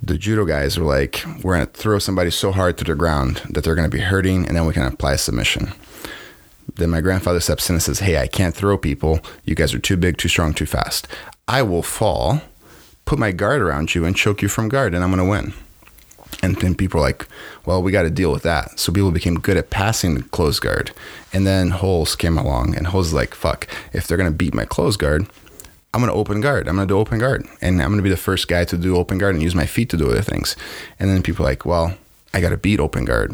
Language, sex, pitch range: English, male, 80-95 Hz